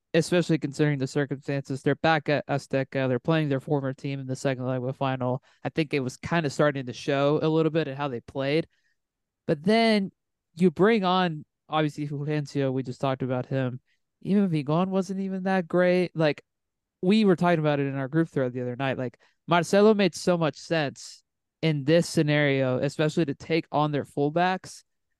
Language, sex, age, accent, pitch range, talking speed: English, male, 20-39, American, 140-170 Hz, 195 wpm